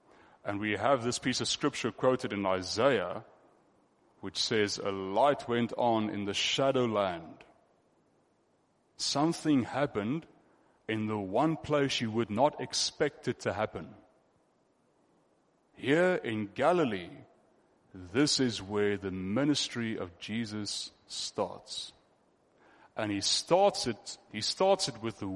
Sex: male